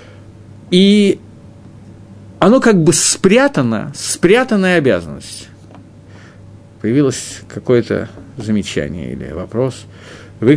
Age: 50-69